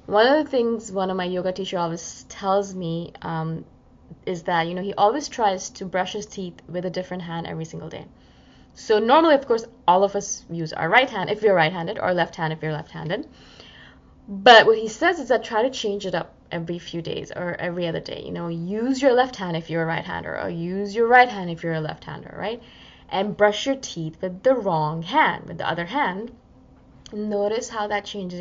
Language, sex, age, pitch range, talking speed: English, female, 20-39, 165-210 Hz, 225 wpm